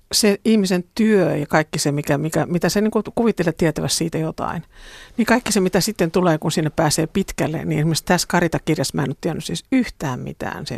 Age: 50-69